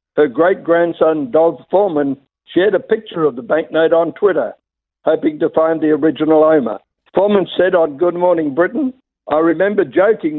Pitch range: 155-190 Hz